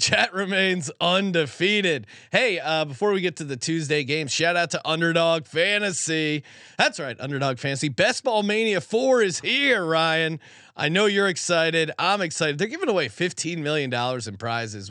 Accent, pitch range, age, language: American, 140-175 Hz, 30-49, English